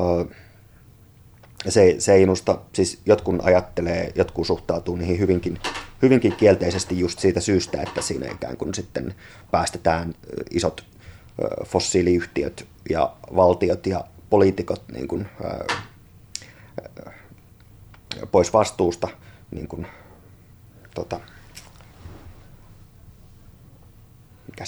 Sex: male